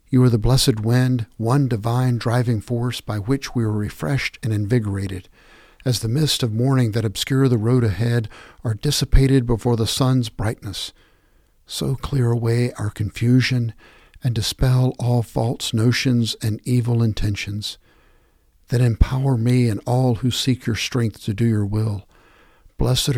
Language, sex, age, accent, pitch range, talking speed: English, male, 60-79, American, 95-120 Hz, 155 wpm